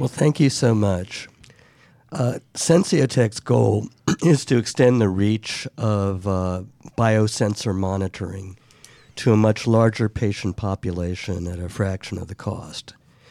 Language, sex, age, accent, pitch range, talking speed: English, male, 50-69, American, 100-120 Hz, 130 wpm